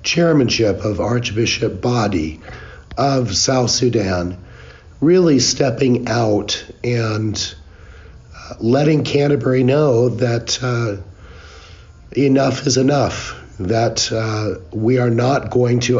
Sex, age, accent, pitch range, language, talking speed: male, 50-69, American, 105-130 Hz, English, 100 wpm